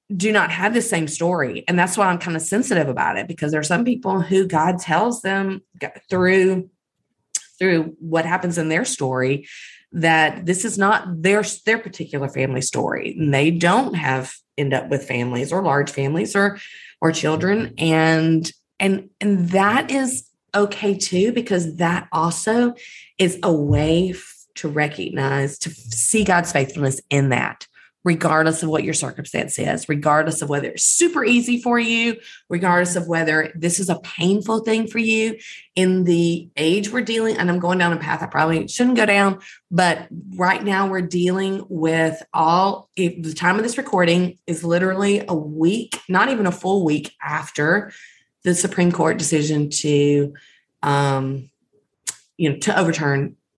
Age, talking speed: 30-49, 165 wpm